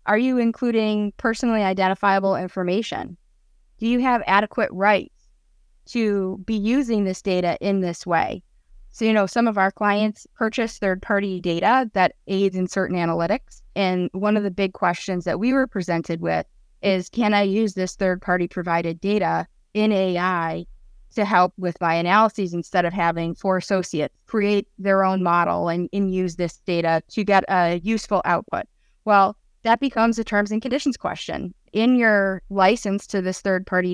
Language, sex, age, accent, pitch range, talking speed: English, female, 20-39, American, 180-215 Hz, 165 wpm